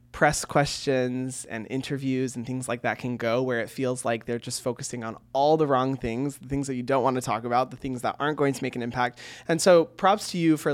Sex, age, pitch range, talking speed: male, 20-39, 120-145 Hz, 255 wpm